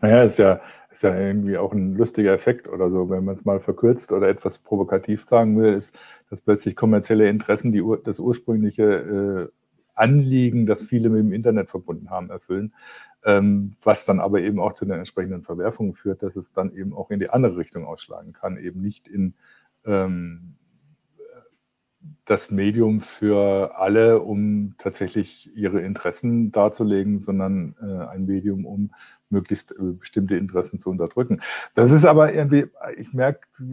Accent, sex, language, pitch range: German, male, German, 100-125 Hz